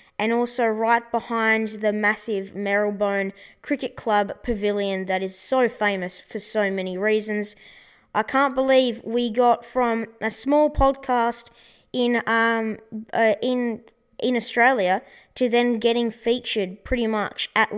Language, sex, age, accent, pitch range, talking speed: English, female, 20-39, Australian, 210-255 Hz, 135 wpm